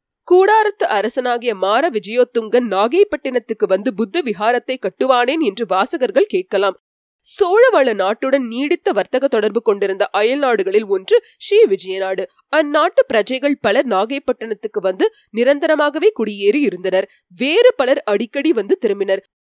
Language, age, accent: Tamil, 20-39, native